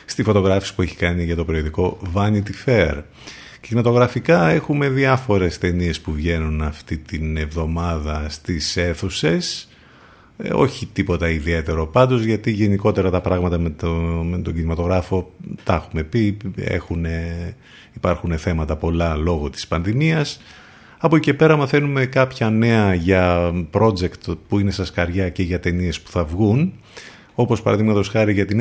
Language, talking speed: Greek, 145 wpm